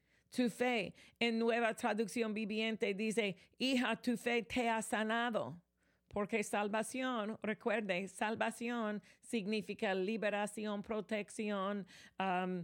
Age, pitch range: 40-59, 200-235 Hz